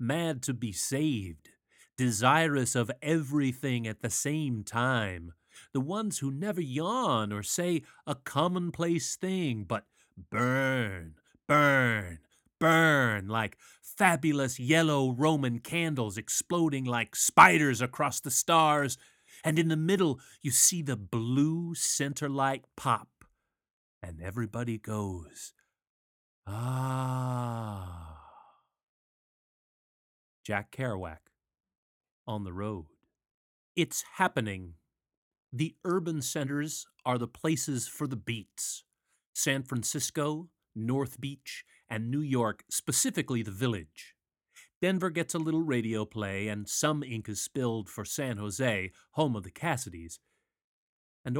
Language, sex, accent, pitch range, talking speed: English, male, American, 110-155 Hz, 110 wpm